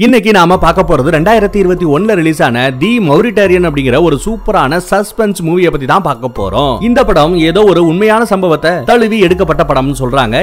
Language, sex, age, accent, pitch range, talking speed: Tamil, male, 30-49, native, 140-195 Hz, 165 wpm